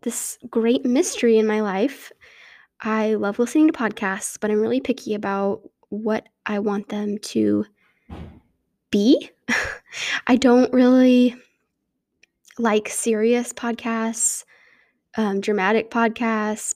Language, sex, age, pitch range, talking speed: English, female, 10-29, 215-250 Hz, 110 wpm